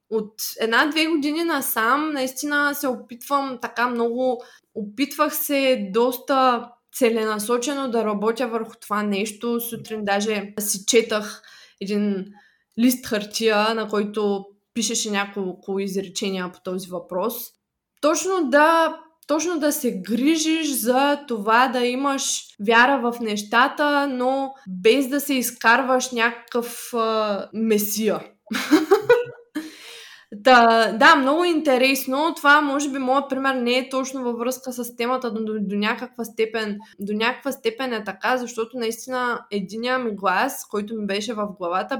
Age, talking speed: 20-39, 130 wpm